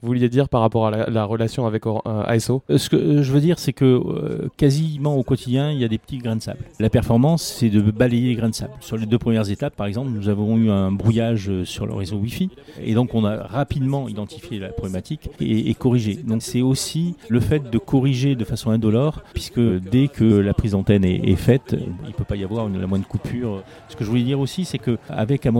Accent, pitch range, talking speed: French, 105-125 Hz, 245 wpm